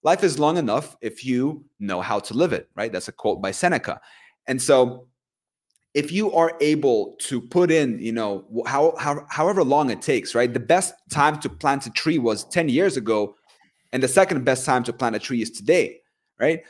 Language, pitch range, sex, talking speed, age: English, 115-175 Hz, male, 210 wpm, 30-49